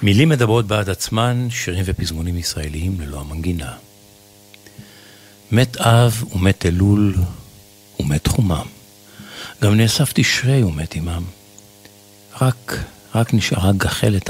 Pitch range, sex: 95-105 Hz, male